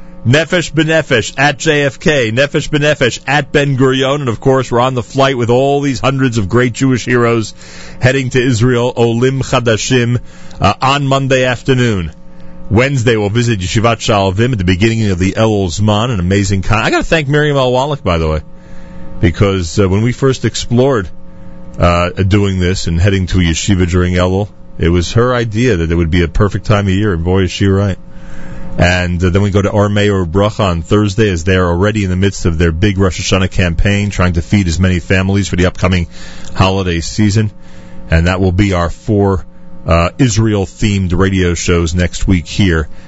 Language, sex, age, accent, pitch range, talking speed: English, male, 40-59, American, 90-130 Hz, 195 wpm